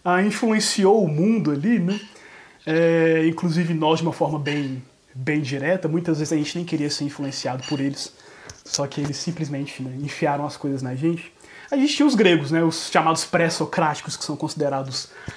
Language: Portuguese